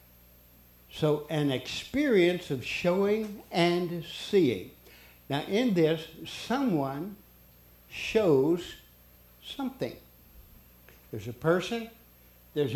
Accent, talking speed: American, 80 wpm